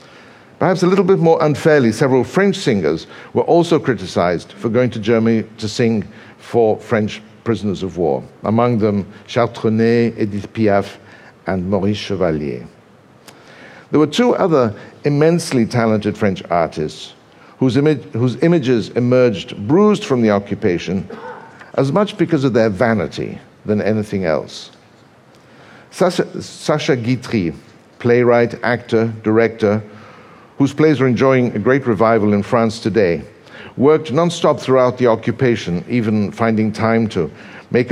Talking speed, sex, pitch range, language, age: 130 wpm, male, 105-135 Hz, English, 60-79